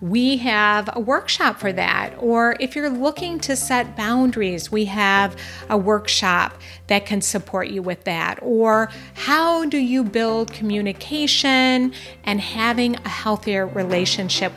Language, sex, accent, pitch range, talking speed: English, female, American, 195-255 Hz, 140 wpm